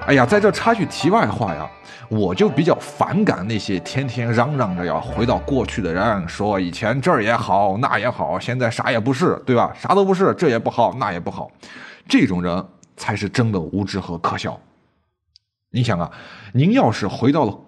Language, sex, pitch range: Chinese, male, 95-145 Hz